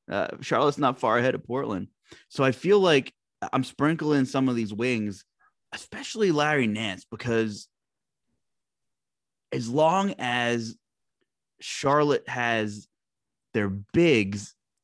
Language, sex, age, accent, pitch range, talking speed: English, male, 20-39, American, 105-140 Hz, 115 wpm